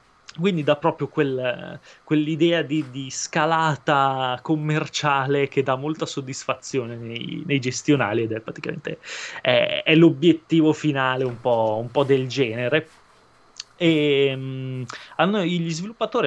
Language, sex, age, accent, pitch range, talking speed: Italian, male, 20-39, native, 130-155 Hz, 105 wpm